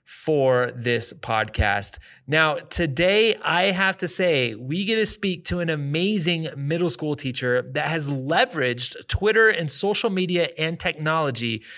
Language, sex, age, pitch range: English, male, 30-49, 135-185 Hz